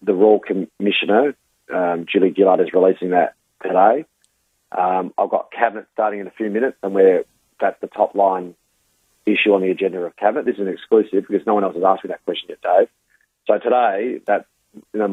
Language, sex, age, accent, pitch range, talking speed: English, male, 30-49, Australian, 95-105 Hz, 200 wpm